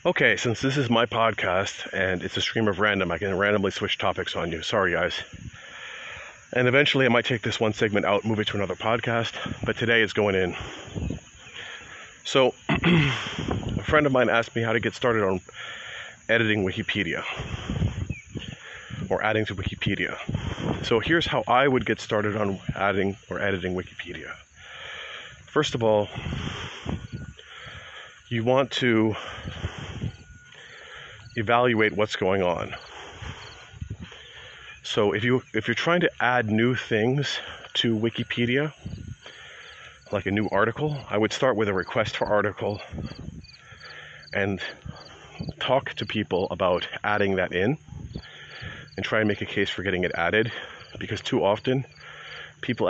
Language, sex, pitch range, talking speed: English, male, 100-120 Hz, 145 wpm